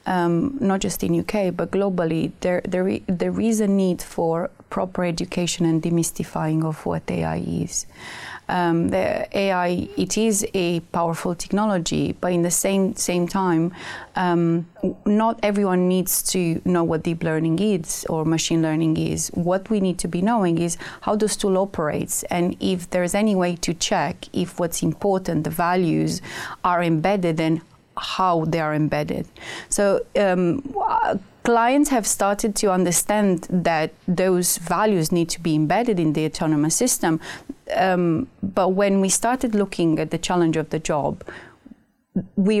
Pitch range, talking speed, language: 165-200 Hz, 160 wpm, English